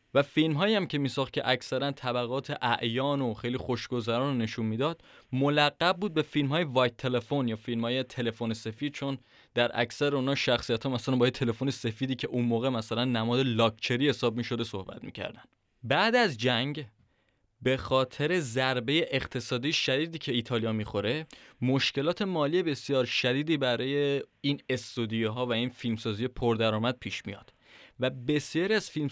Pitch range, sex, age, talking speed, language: 120-145 Hz, male, 20-39, 150 wpm, Persian